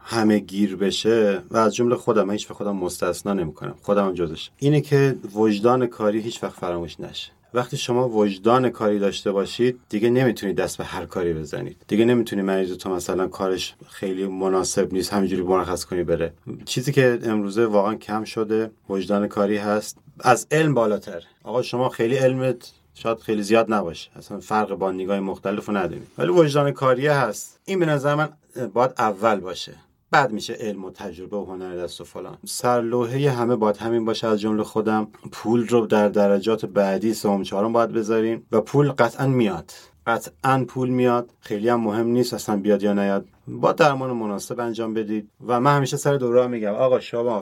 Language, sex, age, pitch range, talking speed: Persian, male, 30-49, 100-125 Hz, 180 wpm